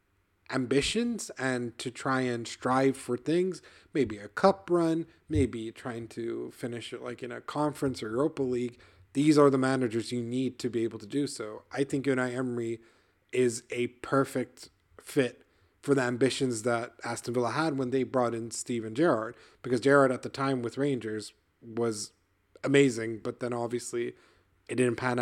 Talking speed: 170 wpm